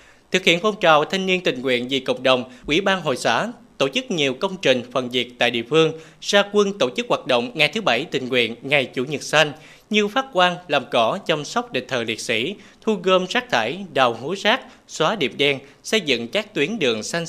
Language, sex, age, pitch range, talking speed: Vietnamese, male, 20-39, 130-205 Hz, 235 wpm